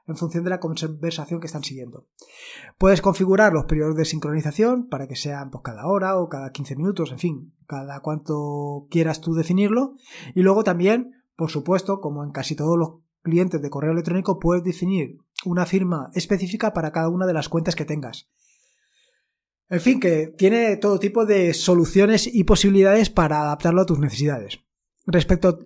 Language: Spanish